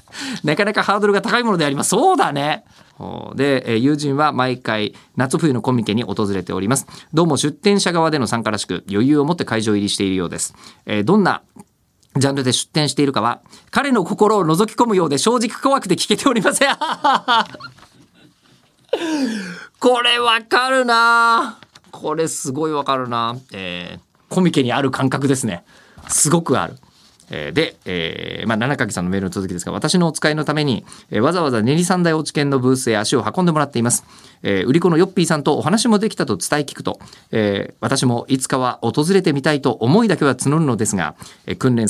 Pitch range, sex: 115-175 Hz, male